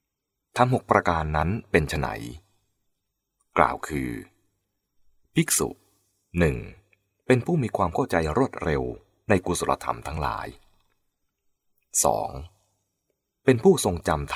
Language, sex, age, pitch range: English, male, 30-49, 75-110 Hz